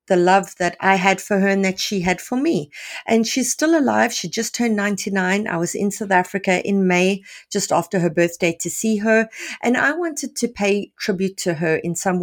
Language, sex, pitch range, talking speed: English, female, 175-215 Hz, 220 wpm